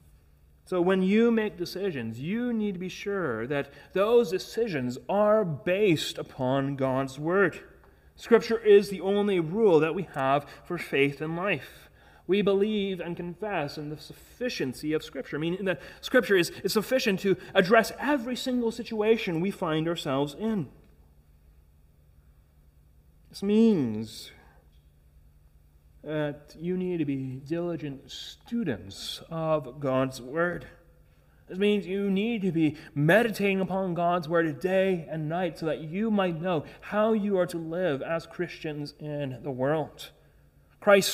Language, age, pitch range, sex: English, 30-49, 135-195 Hz, male